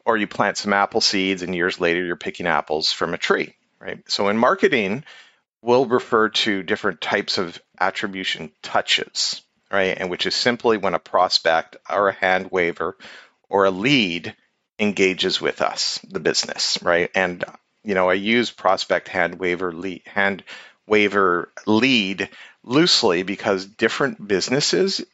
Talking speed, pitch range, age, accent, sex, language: 155 wpm, 90-110 Hz, 40-59, American, male, English